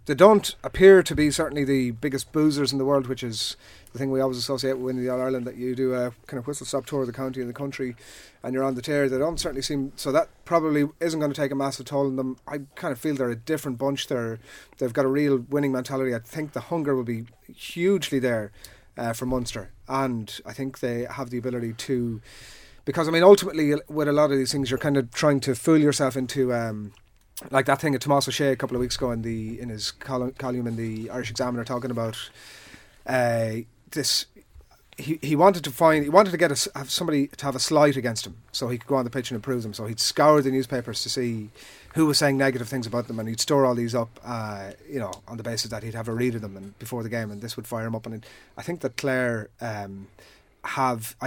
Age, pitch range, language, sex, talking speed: 30-49, 115-140 Hz, English, male, 250 wpm